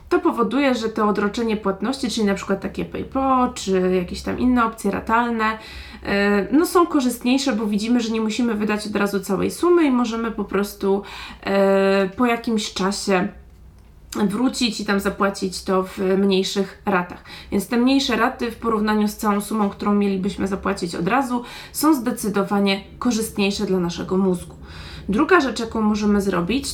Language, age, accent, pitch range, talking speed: Polish, 20-39, native, 200-235 Hz, 155 wpm